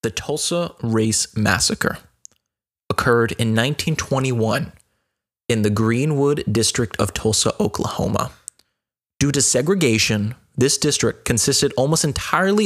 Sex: male